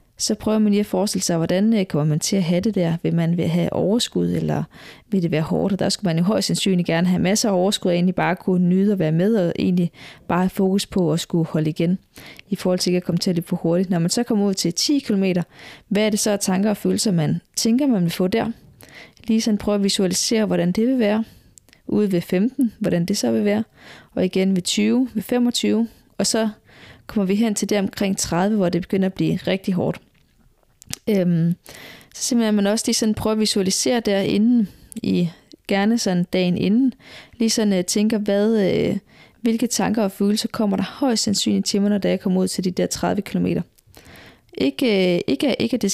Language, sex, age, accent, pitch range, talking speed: Danish, female, 20-39, native, 180-215 Hz, 230 wpm